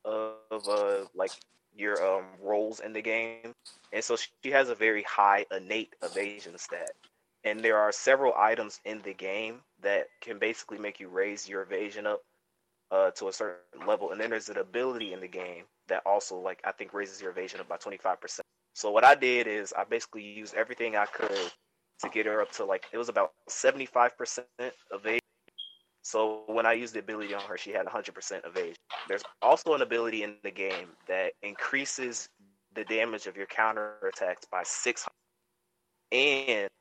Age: 20-39